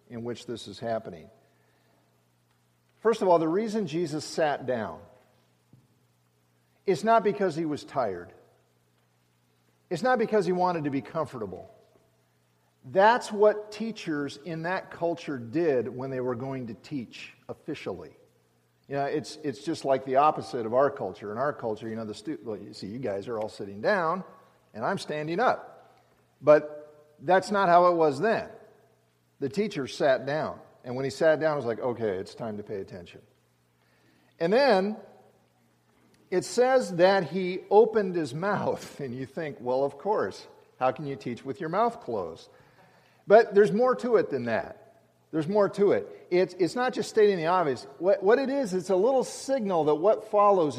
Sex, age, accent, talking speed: male, 50-69, American, 175 wpm